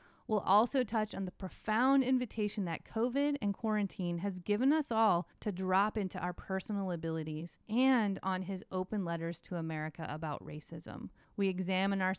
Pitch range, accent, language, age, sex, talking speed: 175-220 Hz, American, English, 30-49, female, 160 wpm